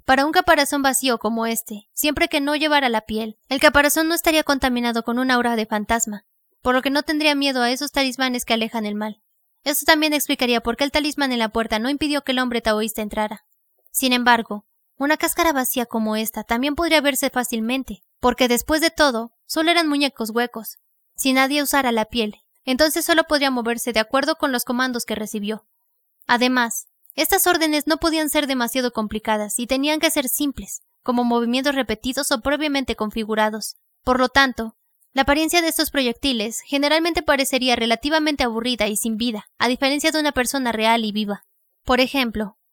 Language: Spanish